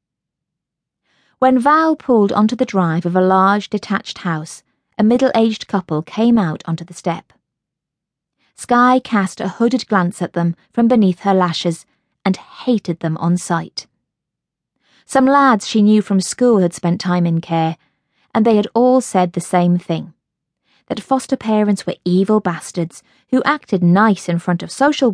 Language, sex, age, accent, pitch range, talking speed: English, female, 30-49, British, 175-230 Hz, 160 wpm